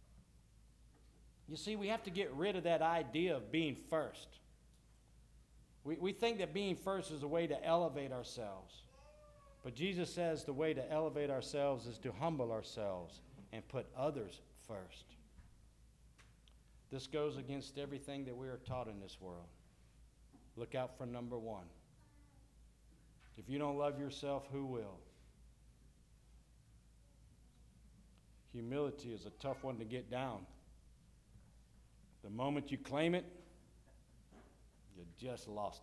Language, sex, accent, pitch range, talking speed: English, male, American, 110-150 Hz, 135 wpm